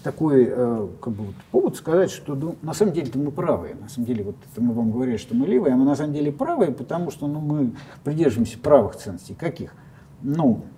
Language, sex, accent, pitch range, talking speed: Russian, male, native, 130-180 Hz, 225 wpm